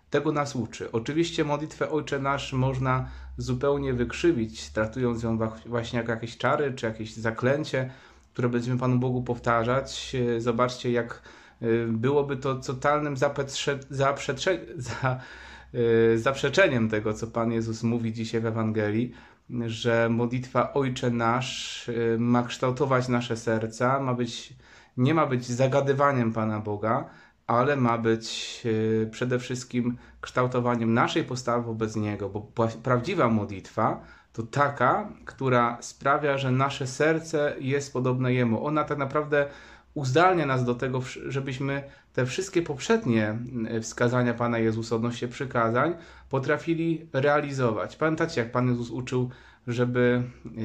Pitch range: 115-140 Hz